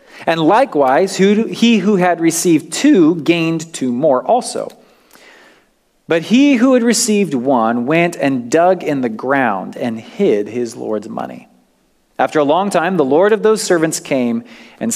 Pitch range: 140-200 Hz